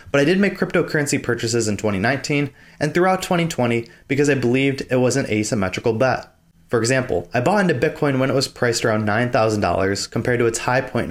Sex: male